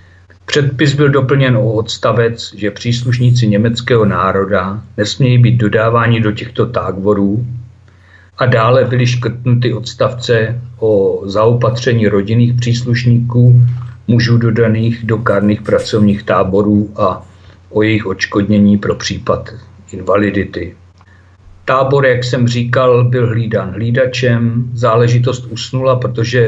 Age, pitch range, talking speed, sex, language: 50-69, 105-120 Hz, 105 wpm, male, Czech